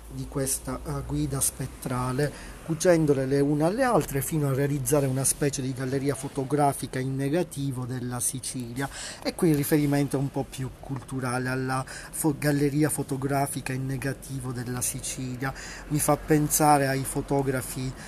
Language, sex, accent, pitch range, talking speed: Italian, male, native, 130-150 Hz, 145 wpm